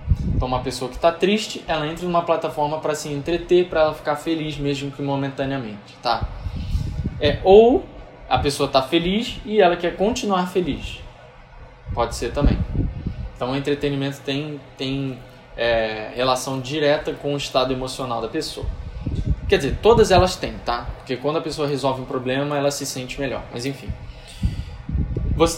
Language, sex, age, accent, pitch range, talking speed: Portuguese, male, 10-29, Brazilian, 130-155 Hz, 160 wpm